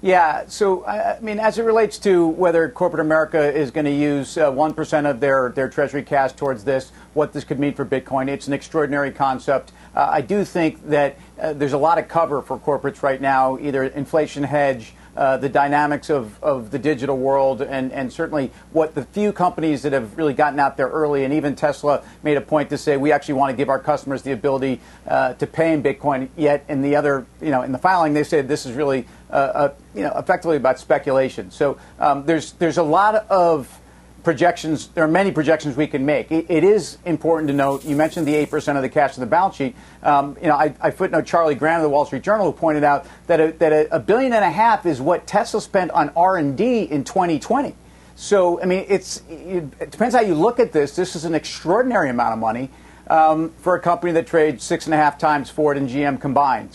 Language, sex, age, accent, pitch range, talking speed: English, male, 50-69, American, 140-165 Hz, 225 wpm